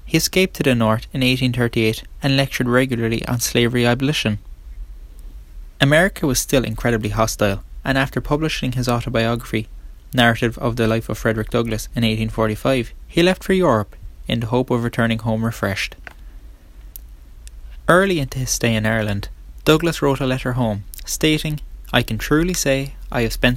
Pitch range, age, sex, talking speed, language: 105-135 Hz, 10-29, male, 160 wpm, English